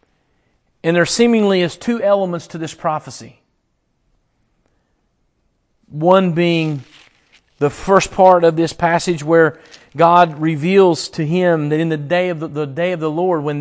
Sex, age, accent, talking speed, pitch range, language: male, 40-59, American, 150 wpm, 150-180 Hz, English